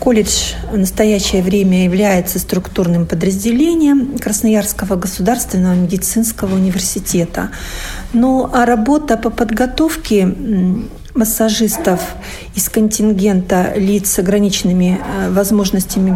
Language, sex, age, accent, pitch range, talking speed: Russian, female, 50-69, native, 195-235 Hz, 85 wpm